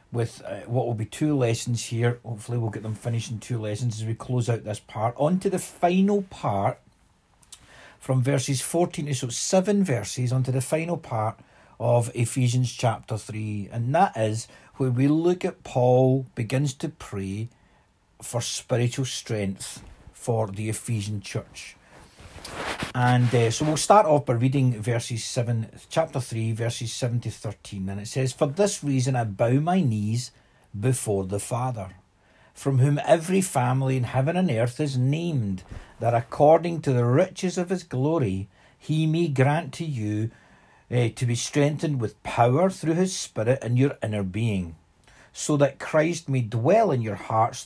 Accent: British